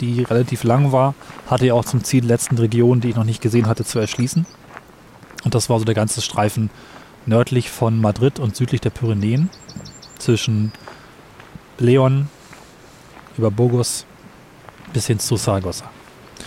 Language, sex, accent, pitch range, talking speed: German, male, German, 110-125 Hz, 155 wpm